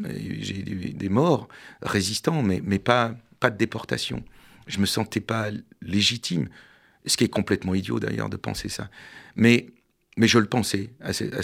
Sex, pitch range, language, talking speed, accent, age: male, 100-120 Hz, French, 175 wpm, French, 50-69